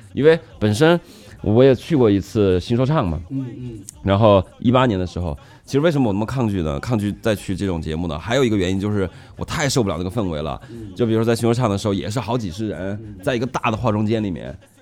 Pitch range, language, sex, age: 100-130 Hz, Chinese, male, 20-39